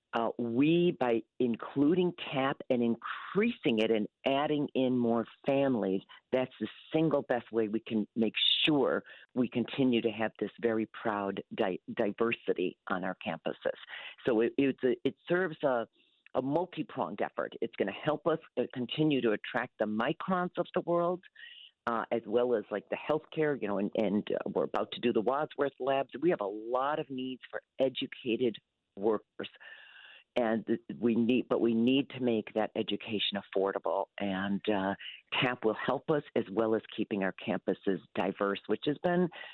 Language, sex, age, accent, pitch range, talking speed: English, female, 50-69, American, 110-150 Hz, 170 wpm